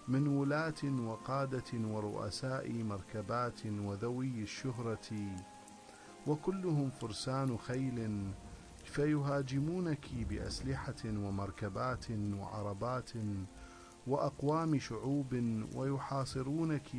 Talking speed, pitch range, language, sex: 60 wpm, 105-140 Hz, English, male